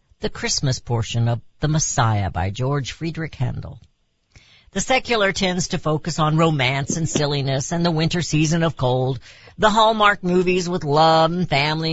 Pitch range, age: 125-170 Hz, 50-69